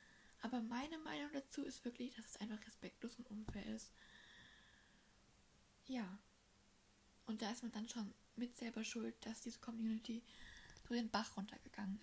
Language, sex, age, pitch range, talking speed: German, female, 10-29, 220-255 Hz, 150 wpm